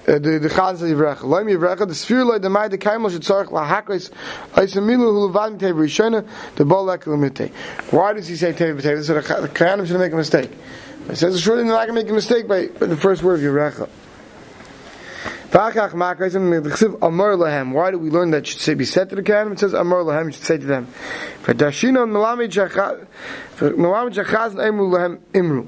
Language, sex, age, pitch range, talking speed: English, male, 30-49, 155-210 Hz, 110 wpm